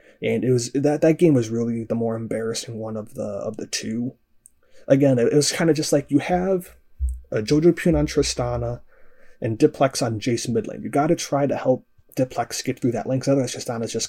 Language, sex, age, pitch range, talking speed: English, male, 30-49, 115-140 Hz, 225 wpm